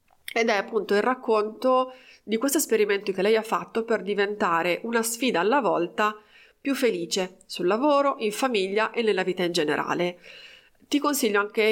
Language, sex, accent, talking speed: Italian, female, native, 165 wpm